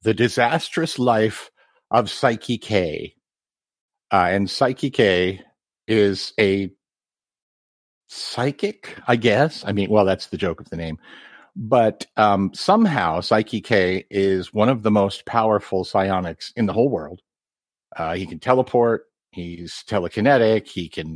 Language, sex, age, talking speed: English, male, 50-69, 125 wpm